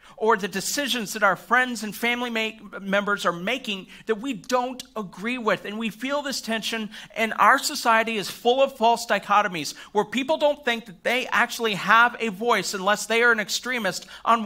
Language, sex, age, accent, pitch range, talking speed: English, male, 50-69, American, 215-255 Hz, 185 wpm